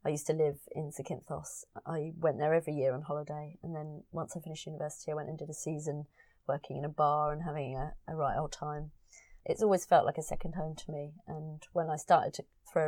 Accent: British